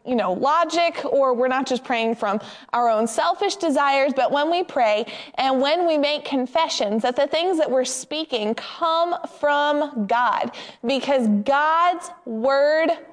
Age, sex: 20-39, female